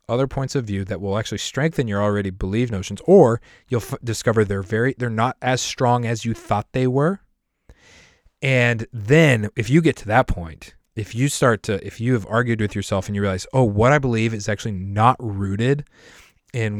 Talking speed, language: 200 wpm, English